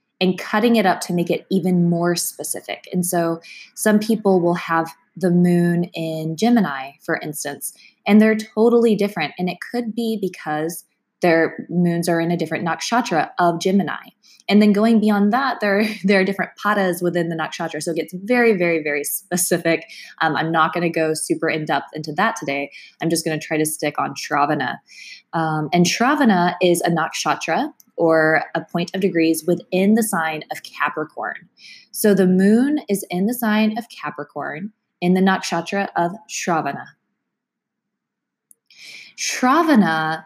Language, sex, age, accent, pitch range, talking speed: English, female, 20-39, American, 165-215 Hz, 165 wpm